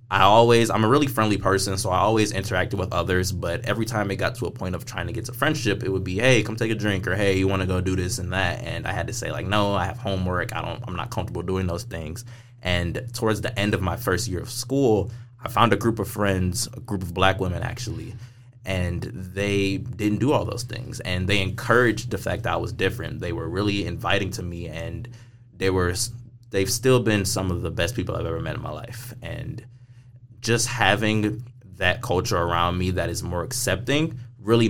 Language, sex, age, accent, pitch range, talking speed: English, male, 20-39, American, 95-120 Hz, 240 wpm